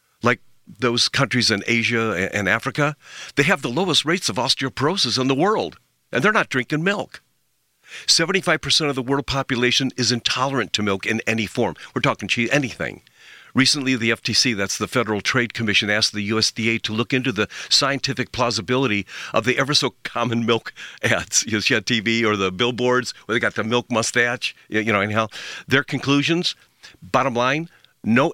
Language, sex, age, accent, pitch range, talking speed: English, male, 50-69, American, 100-130 Hz, 165 wpm